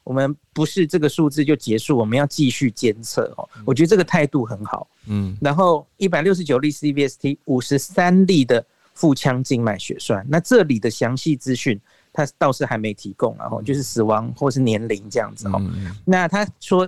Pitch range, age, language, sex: 125-165 Hz, 50-69, Chinese, male